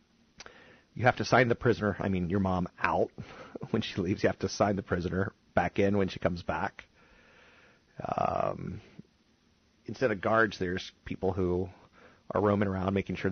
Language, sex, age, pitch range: English, male, 40-59, 85-110 Hz